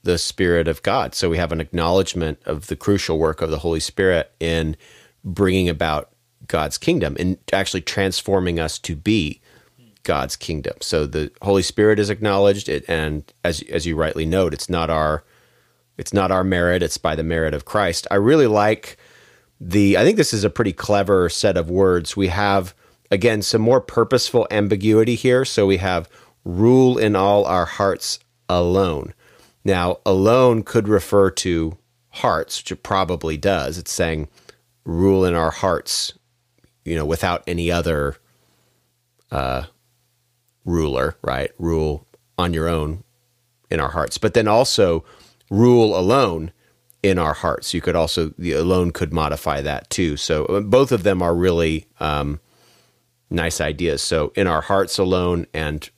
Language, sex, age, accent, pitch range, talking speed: English, male, 40-59, American, 80-105 Hz, 160 wpm